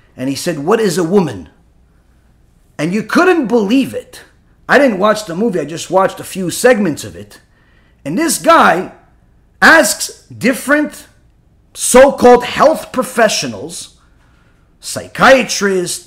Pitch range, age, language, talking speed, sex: 190-260 Hz, 40-59, English, 125 wpm, male